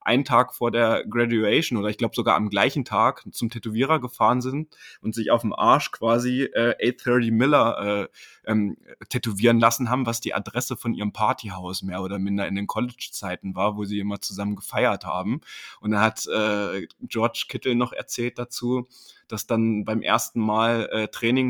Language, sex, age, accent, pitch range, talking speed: German, male, 20-39, German, 105-120 Hz, 180 wpm